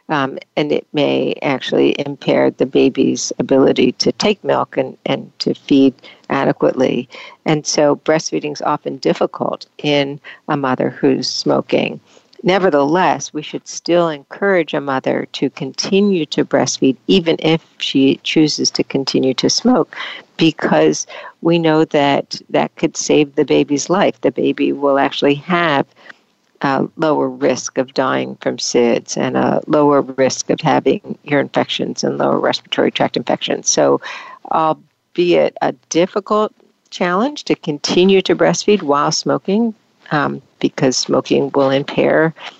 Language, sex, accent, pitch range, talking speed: English, female, American, 140-185 Hz, 135 wpm